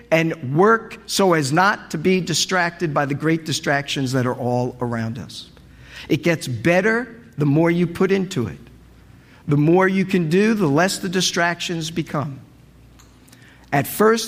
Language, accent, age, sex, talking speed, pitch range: English, American, 50-69, male, 160 wpm, 150-200 Hz